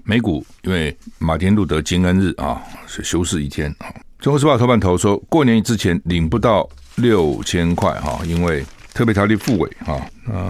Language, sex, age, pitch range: Chinese, male, 60-79, 80-105 Hz